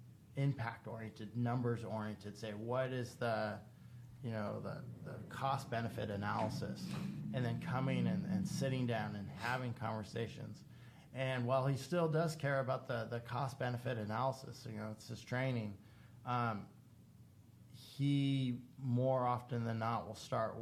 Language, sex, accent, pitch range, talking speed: English, male, American, 110-125 Hz, 140 wpm